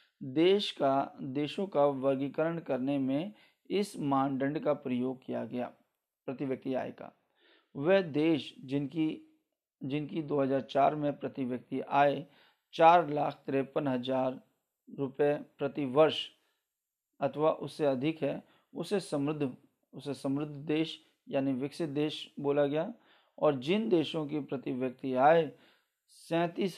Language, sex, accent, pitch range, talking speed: Hindi, male, native, 135-175 Hz, 120 wpm